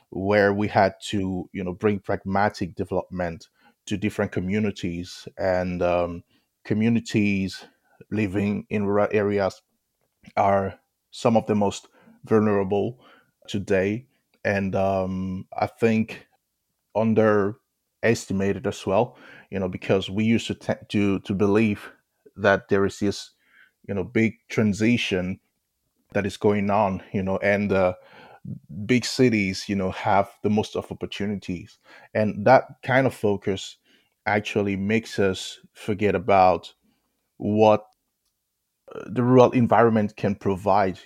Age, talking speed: 20-39, 125 wpm